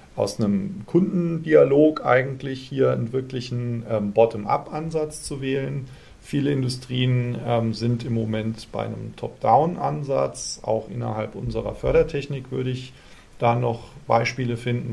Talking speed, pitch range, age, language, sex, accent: 120 wpm, 115-145 Hz, 40-59, German, male, German